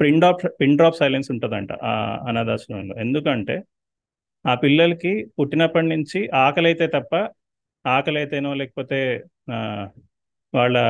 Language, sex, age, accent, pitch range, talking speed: Telugu, male, 30-49, native, 125-150 Hz, 95 wpm